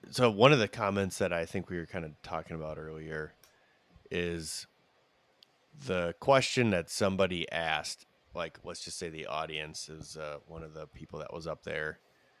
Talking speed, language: 180 wpm, English